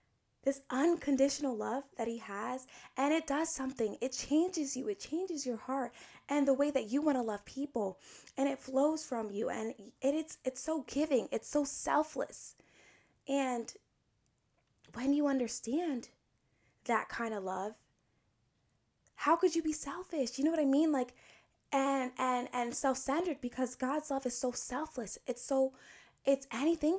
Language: English